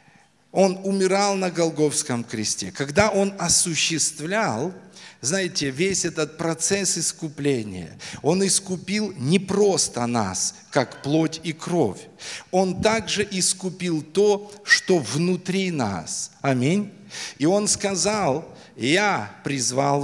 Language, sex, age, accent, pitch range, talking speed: Russian, male, 50-69, native, 140-185 Hz, 105 wpm